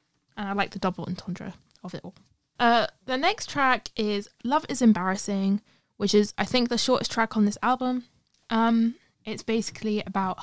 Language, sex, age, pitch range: English, female, 20-39, 195-225 Hz